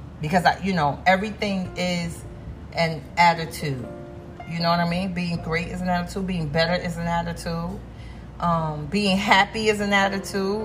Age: 40-59